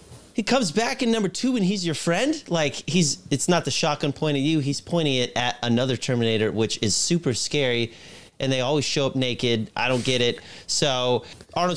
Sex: male